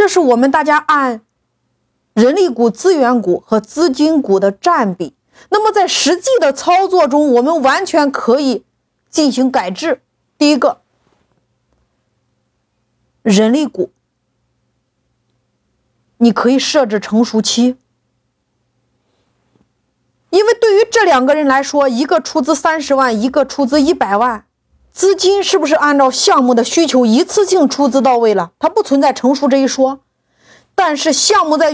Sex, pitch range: female, 245-330 Hz